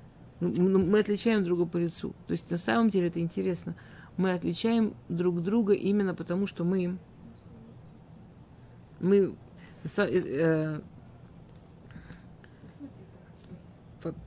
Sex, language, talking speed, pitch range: female, Russian, 95 wpm, 165-195 Hz